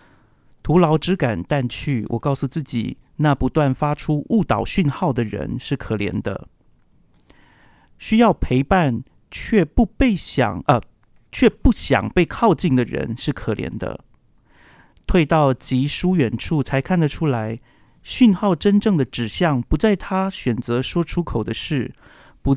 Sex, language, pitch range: male, Chinese, 120-175 Hz